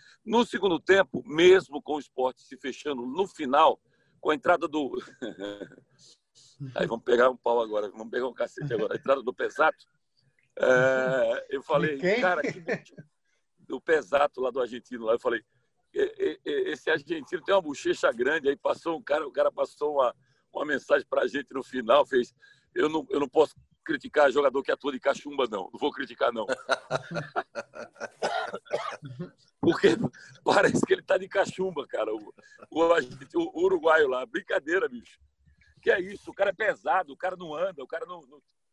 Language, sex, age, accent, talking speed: Portuguese, male, 60-79, Brazilian, 170 wpm